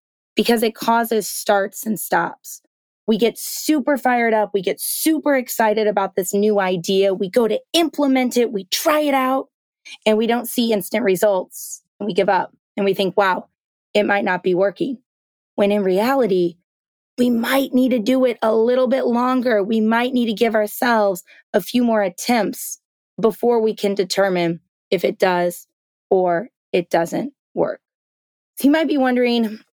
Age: 20-39